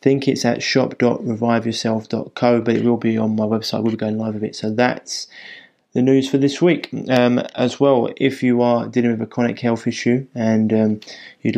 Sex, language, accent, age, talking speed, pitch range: male, English, British, 20-39, 205 wpm, 110-120 Hz